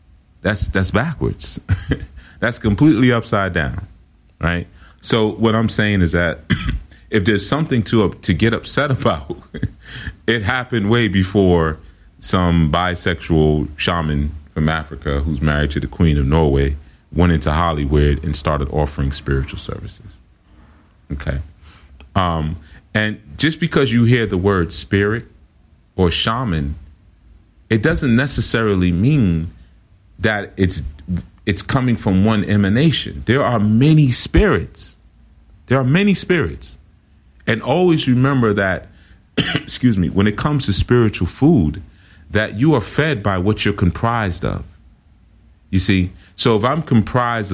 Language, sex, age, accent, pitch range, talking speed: English, male, 30-49, American, 80-110 Hz, 135 wpm